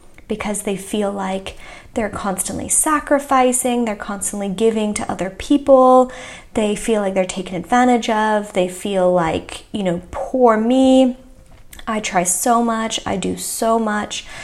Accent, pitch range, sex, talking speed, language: American, 185-250 Hz, female, 145 wpm, English